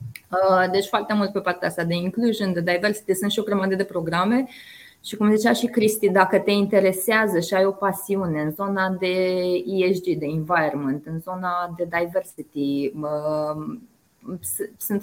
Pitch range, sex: 160-200 Hz, female